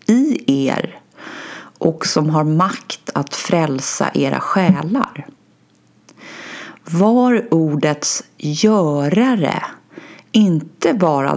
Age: 30-49